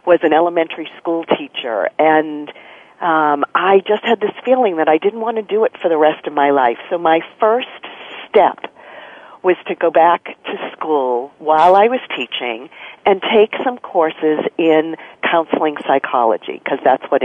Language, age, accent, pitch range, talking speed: English, 50-69, American, 155-260 Hz, 170 wpm